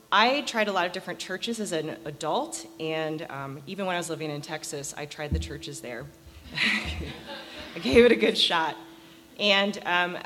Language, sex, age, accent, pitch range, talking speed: English, female, 30-49, American, 155-185 Hz, 185 wpm